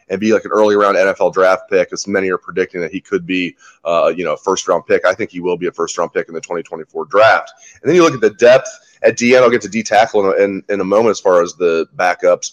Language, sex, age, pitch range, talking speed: English, male, 30-49, 105-125 Hz, 280 wpm